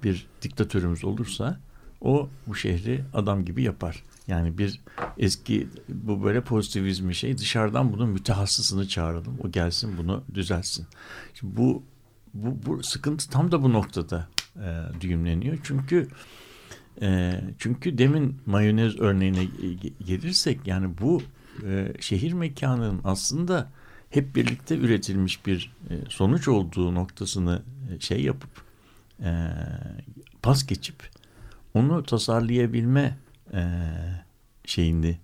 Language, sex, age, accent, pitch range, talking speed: Turkish, male, 60-79, native, 95-125 Hz, 110 wpm